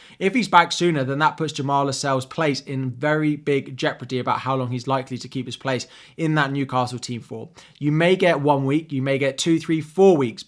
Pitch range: 130-160 Hz